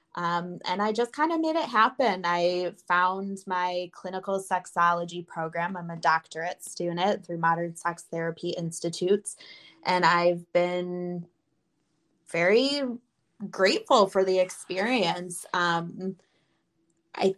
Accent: American